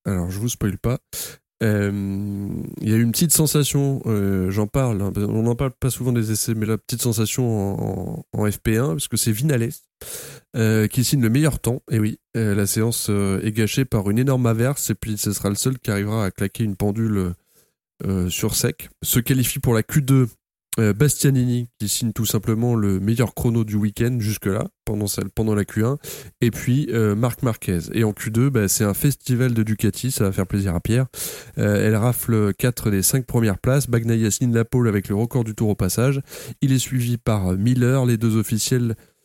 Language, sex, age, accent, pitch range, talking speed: French, male, 20-39, French, 105-125 Hz, 195 wpm